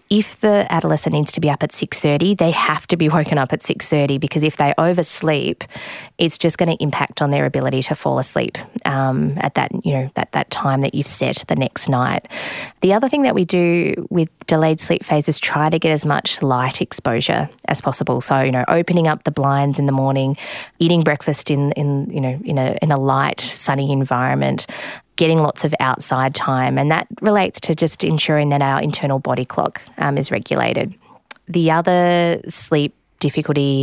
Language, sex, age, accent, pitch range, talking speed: English, female, 20-39, Australian, 135-165 Hz, 195 wpm